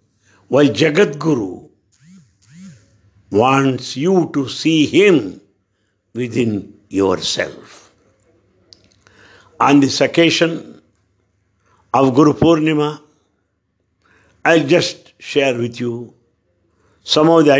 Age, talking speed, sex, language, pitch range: 60-79, 85 wpm, male, English, 100-155 Hz